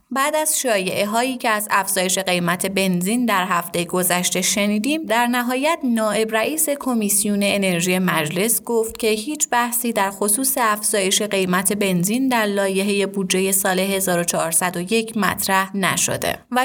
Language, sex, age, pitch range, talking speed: Persian, female, 30-49, 190-235 Hz, 135 wpm